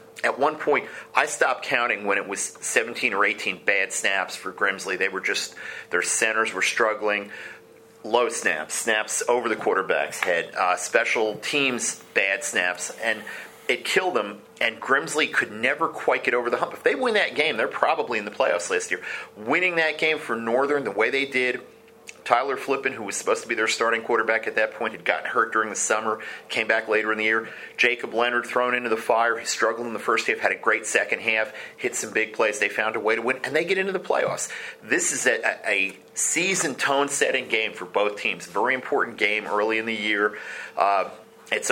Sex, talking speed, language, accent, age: male, 210 wpm, English, American, 40-59